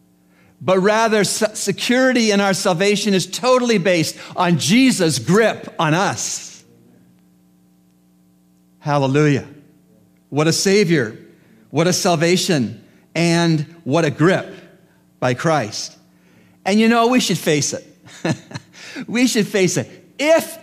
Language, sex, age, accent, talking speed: English, male, 50-69, American, 115 wpm